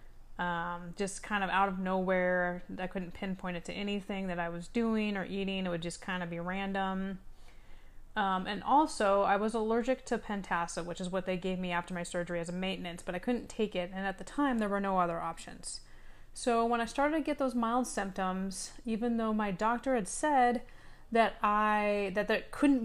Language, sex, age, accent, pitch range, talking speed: English, female, 30-49, American, 185-230 Hz, 210 wpm